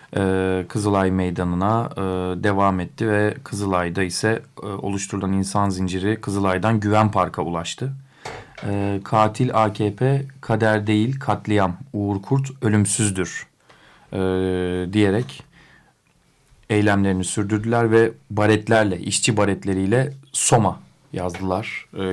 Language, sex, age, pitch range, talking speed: Turkish, male, 40-59, 95-115 Hz, 100 wpm